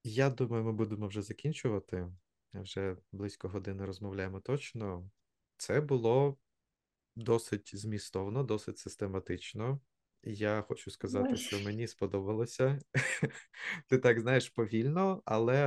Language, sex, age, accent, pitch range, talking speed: Ukrainian, male, 20-39, native, 100-120 Hz, 105 wpm